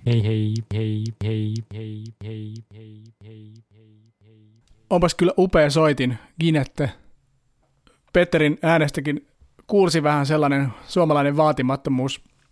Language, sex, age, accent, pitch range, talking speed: Finnish, male, 30-49, native, 130-150 Hz, 90 wpm